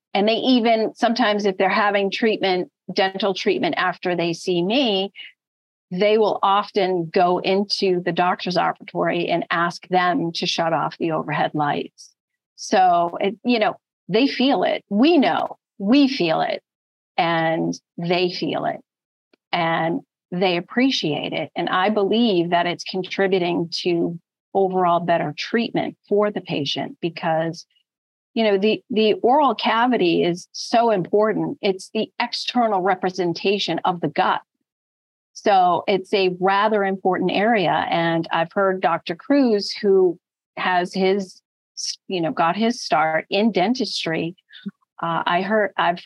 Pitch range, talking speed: 175-215 Hz, 135 wpm